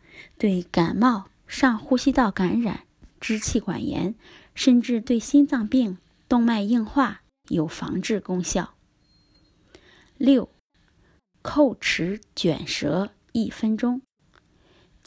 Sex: female